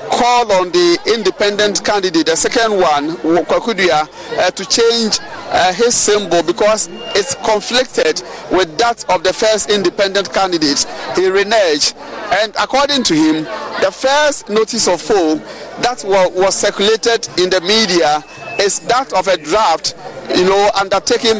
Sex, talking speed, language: male, 135 wpm, English